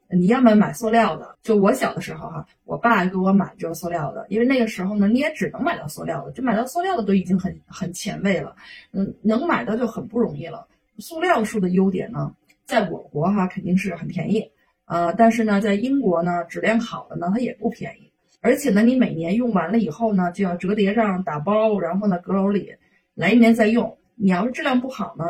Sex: female